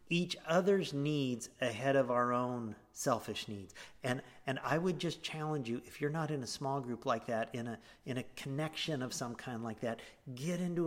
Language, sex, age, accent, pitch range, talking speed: English, male, 50-69, American, 120-165 Hz, 205 wpm